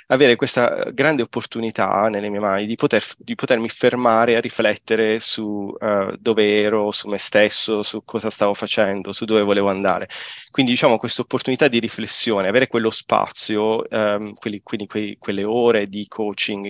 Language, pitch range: Italian, 105-120 Hz